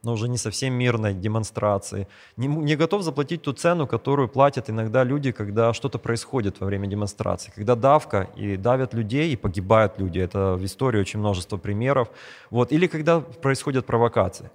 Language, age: Russian, 30-49